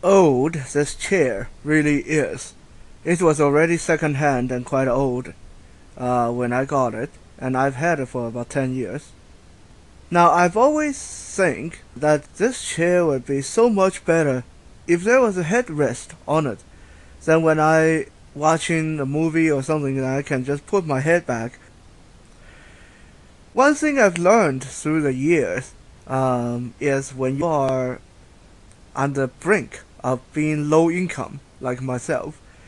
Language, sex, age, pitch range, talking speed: English, male, 20-39, 125-165 Hz, 150 wpm